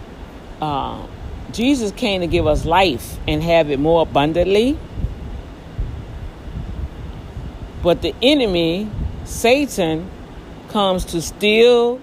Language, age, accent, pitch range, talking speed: English, 40-59, American, 145-235 Hz, 95 wpm